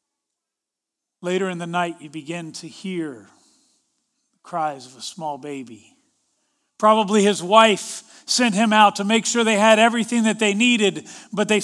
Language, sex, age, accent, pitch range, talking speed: English, male, 40-59, American, 175-245 Hz, 155 wpm